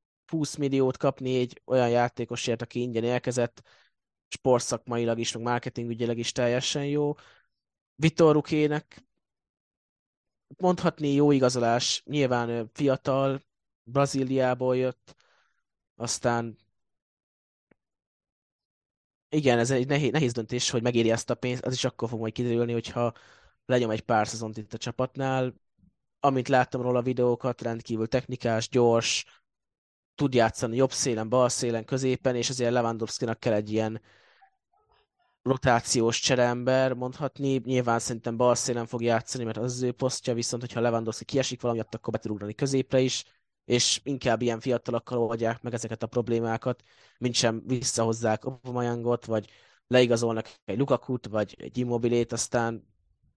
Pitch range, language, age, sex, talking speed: 115-130 Hz, Hungarian, 20-39, male, 125 wpm